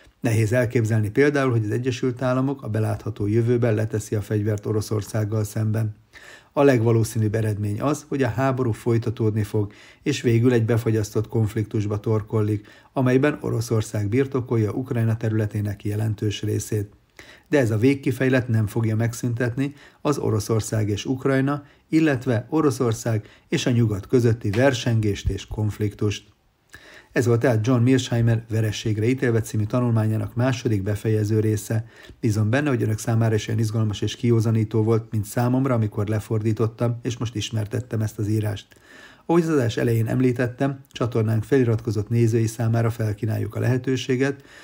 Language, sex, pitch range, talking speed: Hungarian, male, 110-125 Hz, 135 wpm